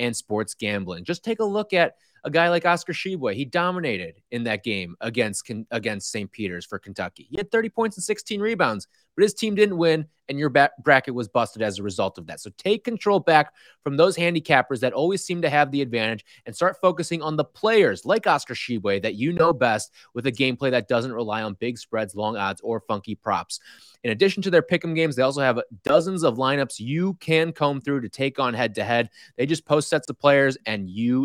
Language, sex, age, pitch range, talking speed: English, male, 20-39, 115-165 Hz, 225 wpm